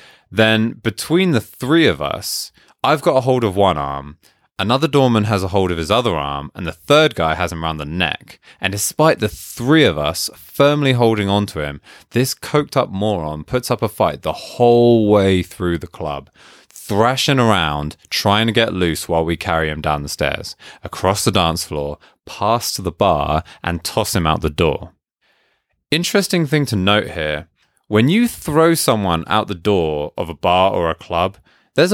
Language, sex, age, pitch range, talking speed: English, male, 20-39, 80-125 Hz, 190 wpm